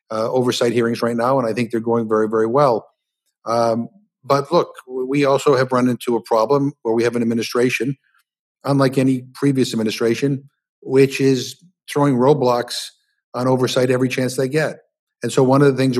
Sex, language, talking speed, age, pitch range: male, English, 180 wpm, 50-69, 115-135 Hz